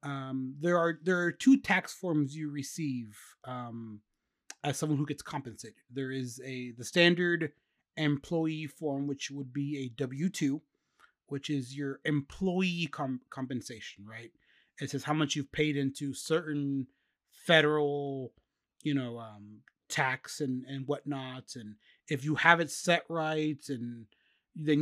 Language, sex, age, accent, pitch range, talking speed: English, male, 30-49, American, 130-165 Hz, 145 wpm